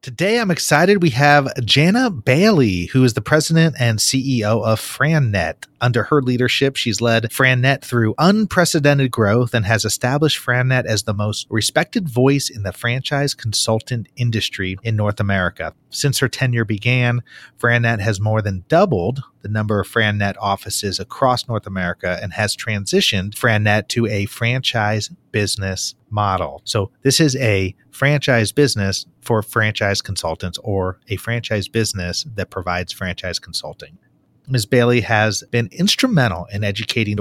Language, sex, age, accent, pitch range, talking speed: English, male, 30-49, American, 100-130 Hz, 145 wpm